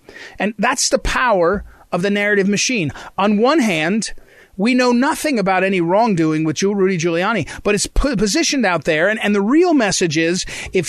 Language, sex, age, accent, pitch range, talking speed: English, male, 30-49, American, 185-255 Hz, 175 wpm